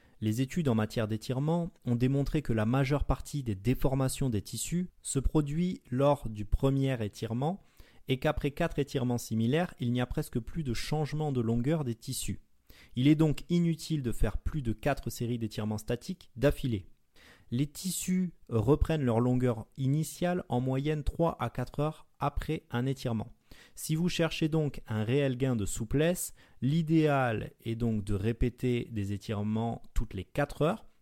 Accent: French